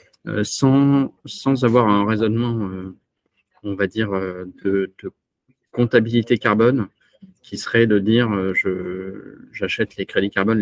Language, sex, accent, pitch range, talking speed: French, male, French, 95-115 Hz, 140 wpm